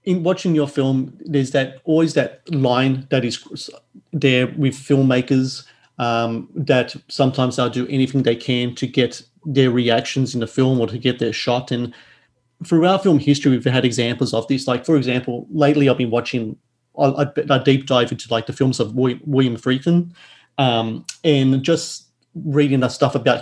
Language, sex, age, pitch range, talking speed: English, male, 30-49, 120-140 Hz, 170 wpm